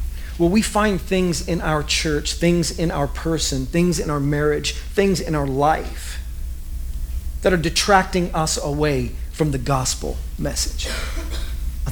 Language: English